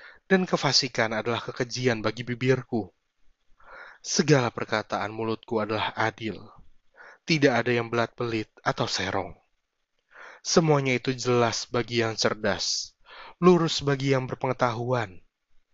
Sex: male